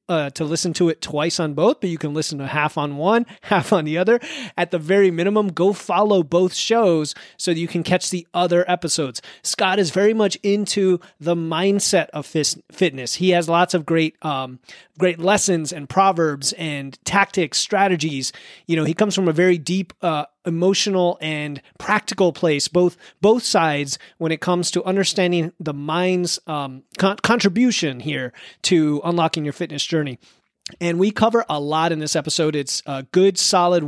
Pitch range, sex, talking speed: 155-195 Hz, male, 185 wpm